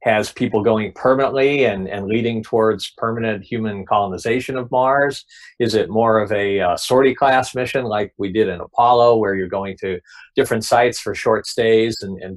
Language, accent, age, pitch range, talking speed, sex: English, American, 50-69, 100-125 Hz, 185 wpm, male